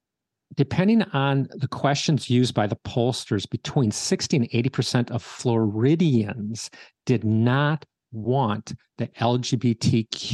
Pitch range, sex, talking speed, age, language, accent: 115-145 Hz, male, 115 wpm, 40-59, English, American